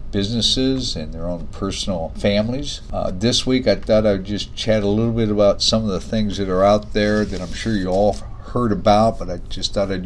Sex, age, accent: male, 50-69, American